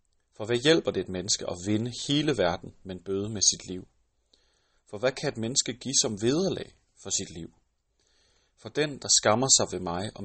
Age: 30-49